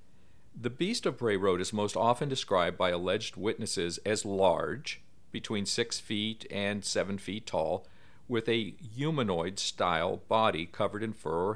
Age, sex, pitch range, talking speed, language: 50-69, male, 90-110 Hz, 155 wpm, English